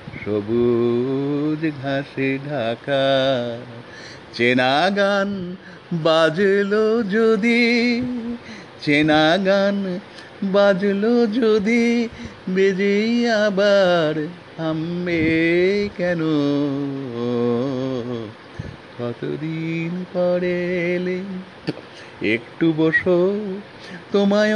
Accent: native